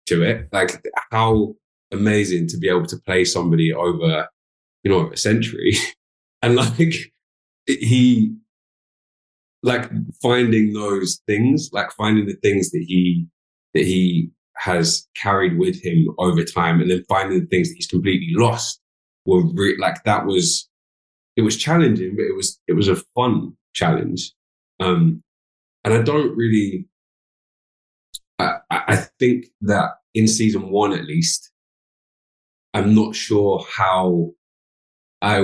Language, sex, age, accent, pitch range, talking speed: English, male, 20-39, British, 85-130 Hz, 135 wpm